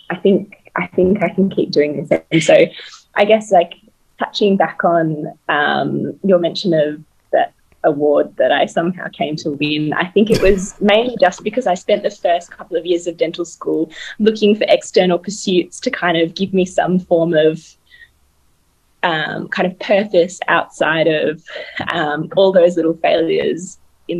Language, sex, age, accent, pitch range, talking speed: English, female, 20-39, Australian, 165-205 Hz, 175 wpm